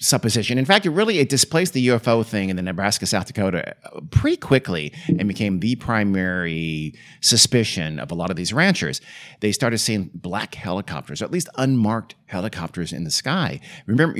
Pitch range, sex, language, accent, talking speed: 85-120 Hz, male, English, American, 180 wpm